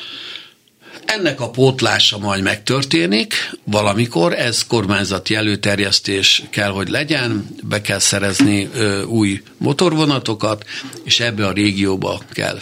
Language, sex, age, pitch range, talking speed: Hungarian, male, 60-79, 100-115 Hz, 110 wpm